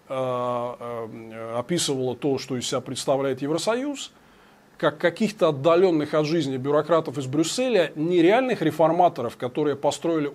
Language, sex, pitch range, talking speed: Russian, male, 130-165 Hz, 110 wpm